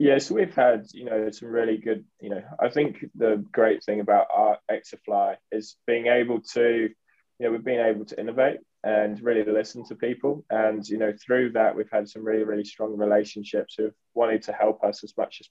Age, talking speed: 20-39, 215 wpm